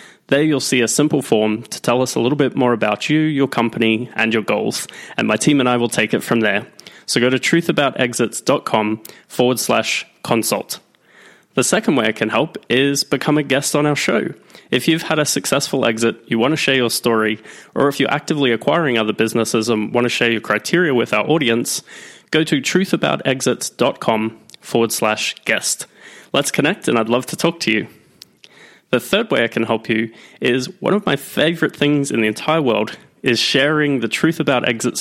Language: English